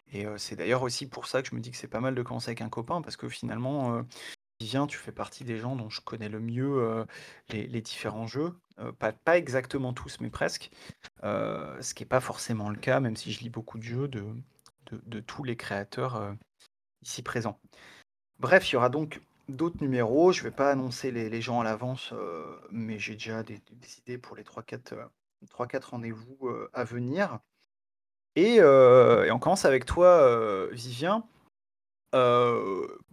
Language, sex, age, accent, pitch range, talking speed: French, male, 30-49, French, 110-135 Hz, 200 wpm